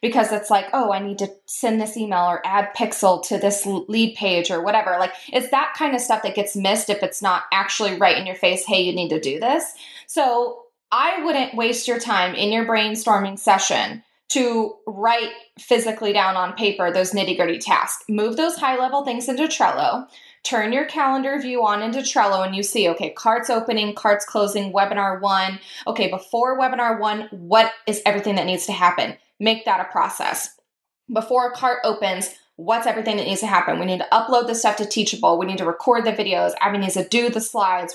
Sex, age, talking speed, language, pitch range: female, 20-39, 205 wpm, English, 195-240 Hz